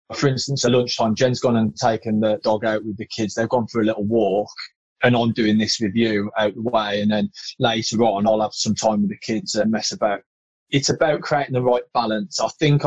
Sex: male